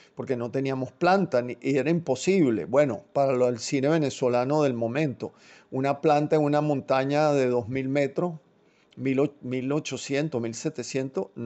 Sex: male